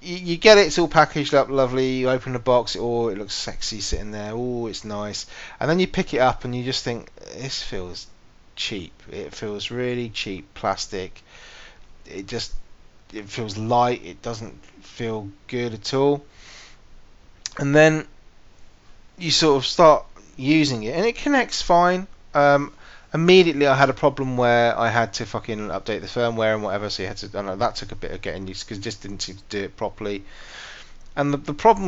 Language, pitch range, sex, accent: English, 105-140 Hz, male, British